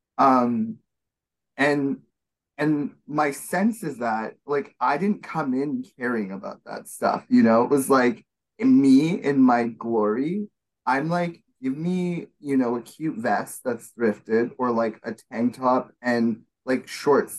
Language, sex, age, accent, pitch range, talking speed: English, male, 20-39, American, 115-165 Hz, 150 wpm